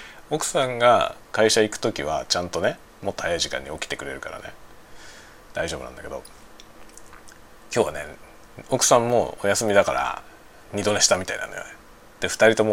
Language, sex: Japanese, male